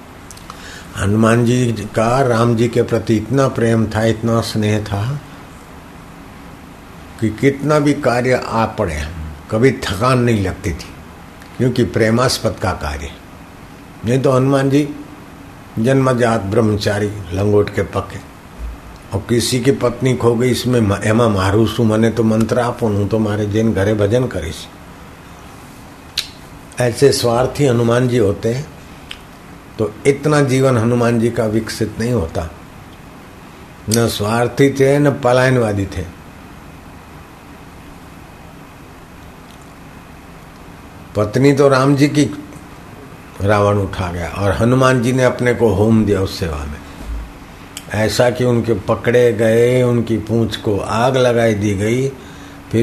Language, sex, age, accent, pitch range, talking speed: Hindi, male, 60-79, native, 95-120 Hz, 120 wpm